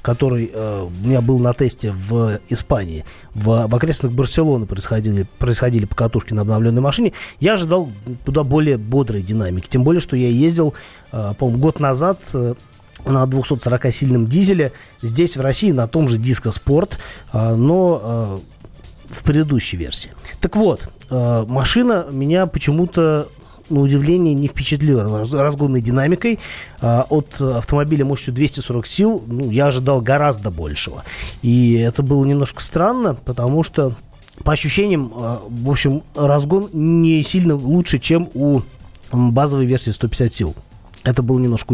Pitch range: 115-150 Hz